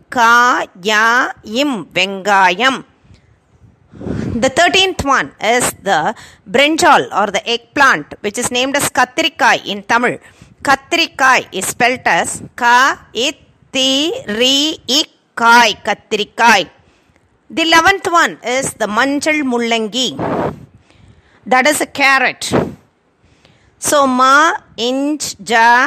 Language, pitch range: Tamil, 235-285 Hz